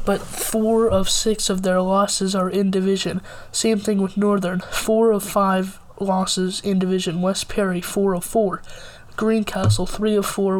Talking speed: 165 wpm